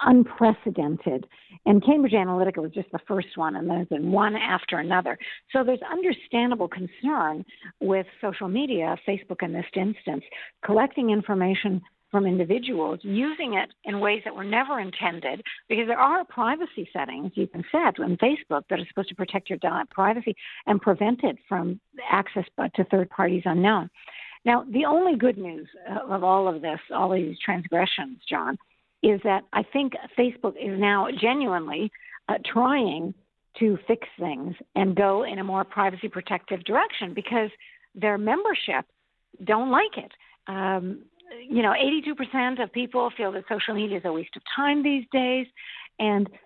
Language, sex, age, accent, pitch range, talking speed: English, female, 50-69, American, 190-245 Hz, 160 wpm